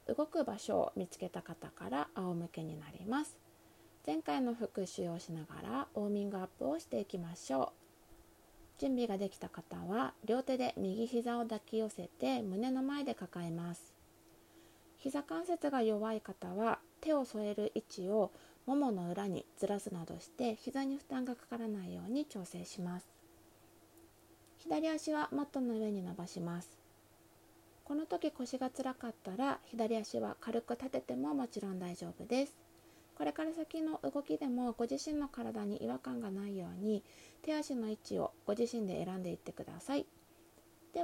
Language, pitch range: Japanese, 185-260 Hz